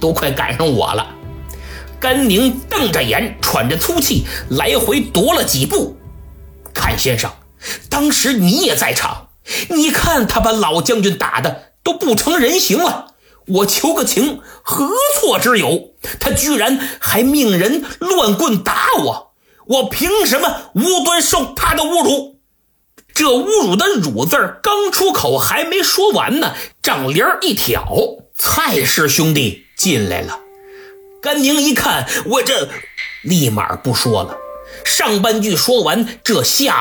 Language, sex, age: Chinese, male, 50-69